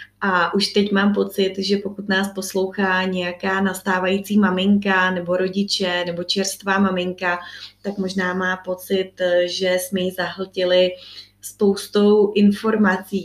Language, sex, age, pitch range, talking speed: Czech, female, 20-39, 180-200 Hz, 120 wpm